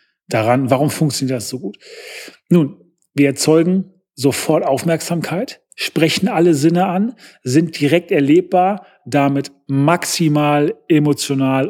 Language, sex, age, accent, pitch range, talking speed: German, male, 40-59, German, 135-175 Hz, 110 wpm